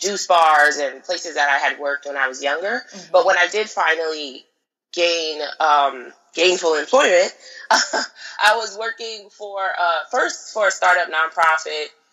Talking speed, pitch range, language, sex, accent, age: 155 wpm, 155-195 Hz, English, female, American, 20-39